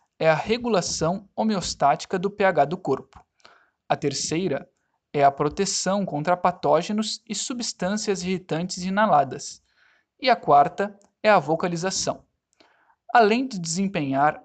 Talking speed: 115 wpm